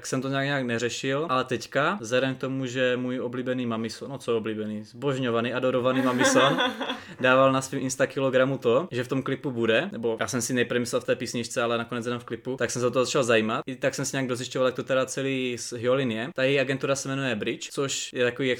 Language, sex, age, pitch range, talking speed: Czech, male, 20-39, 120-135 Hz, 240 wpm